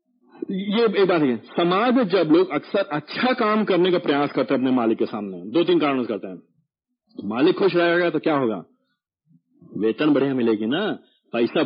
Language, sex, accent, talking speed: Hindi, male, native, 180 wpm